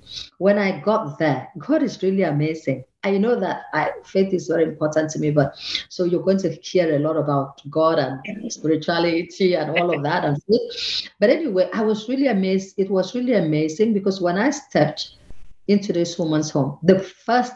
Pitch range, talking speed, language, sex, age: 155-205 Hz, 190 wpm, English, female, 50-69